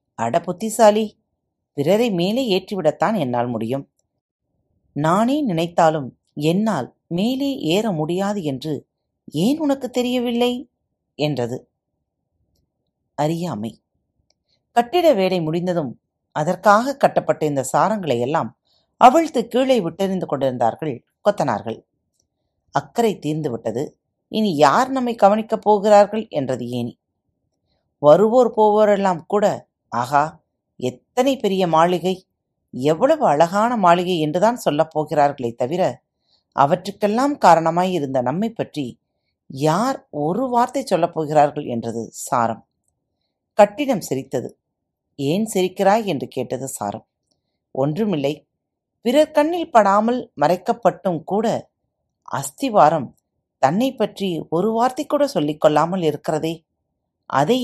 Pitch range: 145-220 Hz